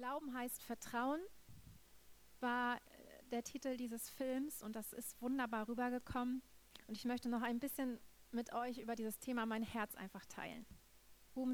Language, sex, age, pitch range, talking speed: German, female, 30-49, 220-270 Hz, 150 wpm